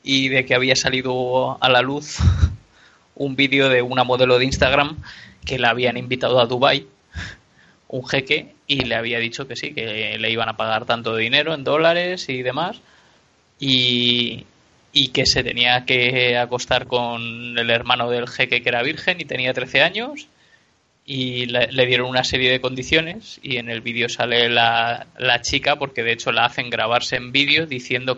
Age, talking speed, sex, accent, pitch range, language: 20-39, 180 wpm, male, Spanish, 120-135 Hz, Spanish